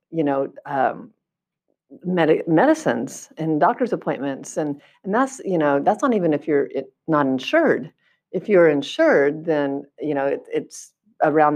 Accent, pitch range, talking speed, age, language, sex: American, 140-170 Hz, 140 wpm, 50-69, English, female